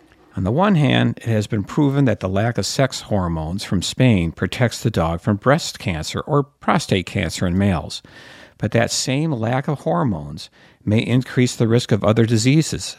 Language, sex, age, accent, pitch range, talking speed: English, male, 50-69, American, 100-130 Hz, 185 wpm